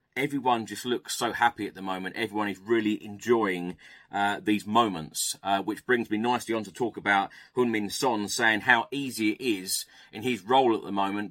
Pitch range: 100-125 Hz